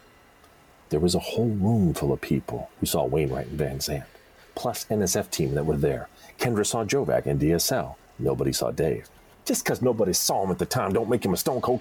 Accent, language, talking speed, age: American, English, 210 wpm, 40-59